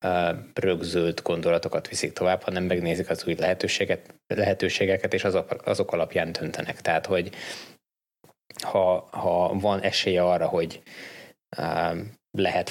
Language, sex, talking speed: Hungarian, male, 110 wpm